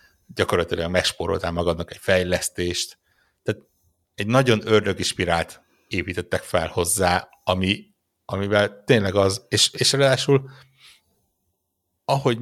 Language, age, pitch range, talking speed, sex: Hungarian, 60-79, 90-120 Hz, 100 wpm, male